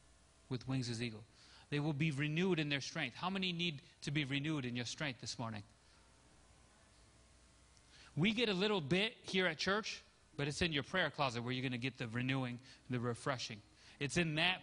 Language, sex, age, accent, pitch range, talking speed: English, male, 30-49, American, 125-185 Hz, 195 wpm